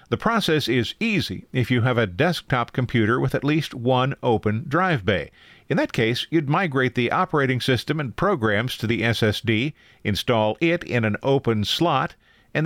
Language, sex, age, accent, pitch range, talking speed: English, male, 50-69, American, 110-150 Hz, 175 wpm